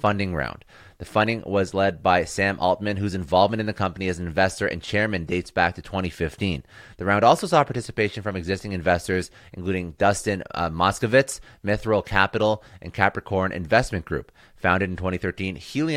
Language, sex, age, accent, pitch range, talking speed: English, male, 30-49, American, 90-110 Hz, 165 wpm